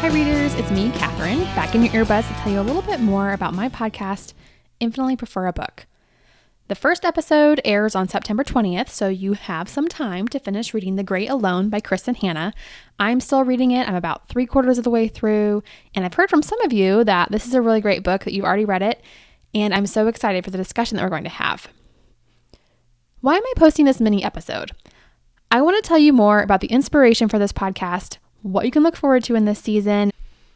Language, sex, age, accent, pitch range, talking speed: English, female, 20-39, American, 195-240 Hz, 230 wpm